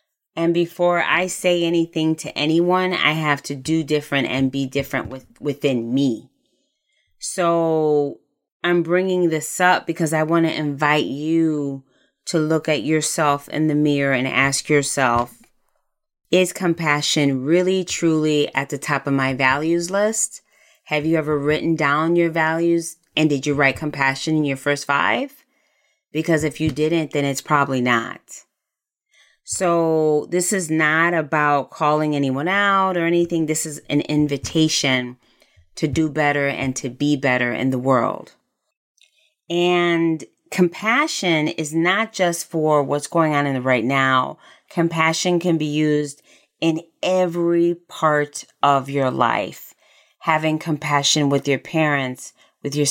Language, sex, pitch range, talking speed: English, female, 140-170 Hz, 145 wpm